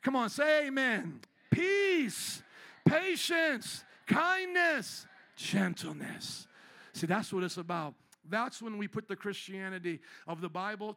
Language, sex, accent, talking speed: English, male, American, 120 wpm